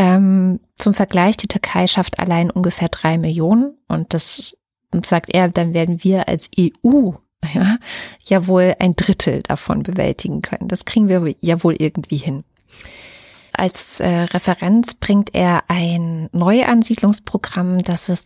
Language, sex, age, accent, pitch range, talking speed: German, female, 30-49, German, 175-210 Hz, 140 wpm